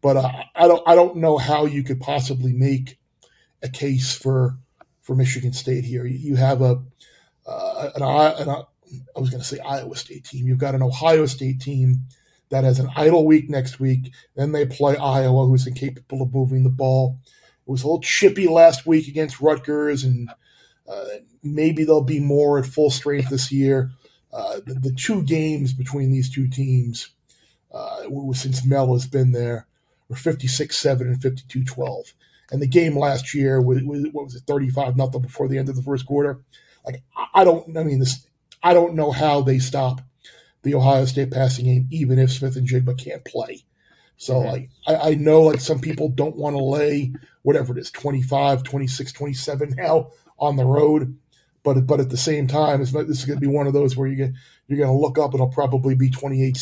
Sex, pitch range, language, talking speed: male, 130-150 Hz, English, 205 wpm